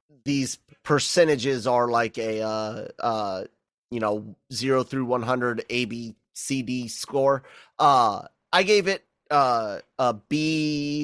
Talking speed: 135 wpm